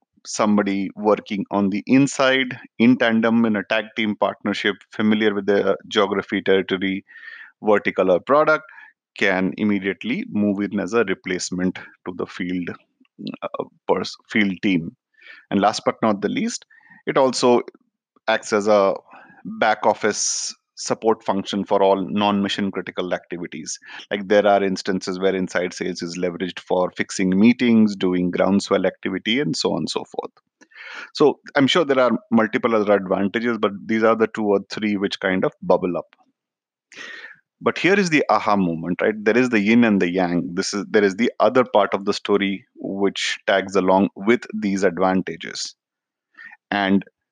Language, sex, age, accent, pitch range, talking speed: English, male, 30-49, Indian, 95-130 Hz, 160 wpm